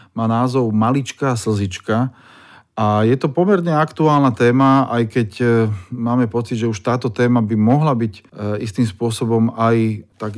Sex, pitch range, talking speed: male, 105-120 Hz, 150 wpm